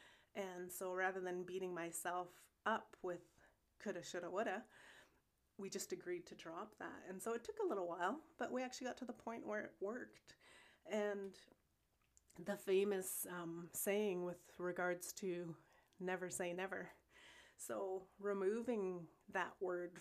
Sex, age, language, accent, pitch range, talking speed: female, 30-49, English, American, 175-200 Hz, 145 wpm